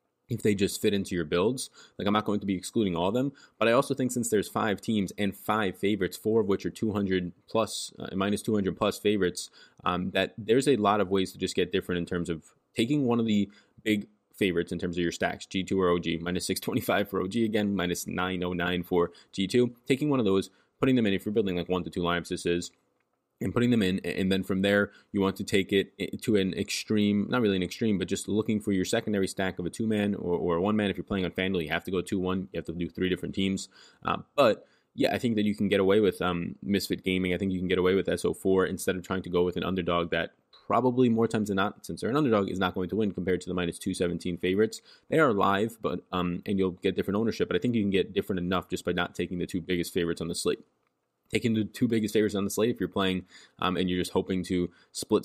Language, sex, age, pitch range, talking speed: English, male, 20-39, 90-105 Hz, 260 wpm